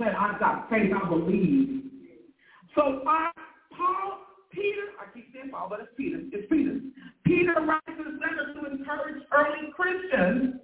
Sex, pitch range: male, 270-325 Hz